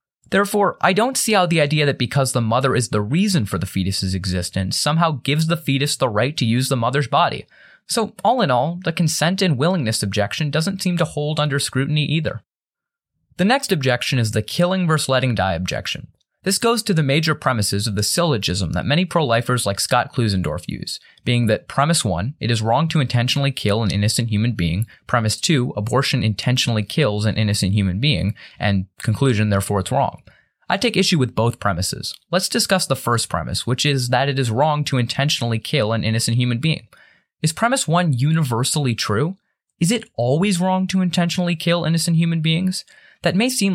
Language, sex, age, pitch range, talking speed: English, male, 20-39, 115-170 Hz, 195 wpm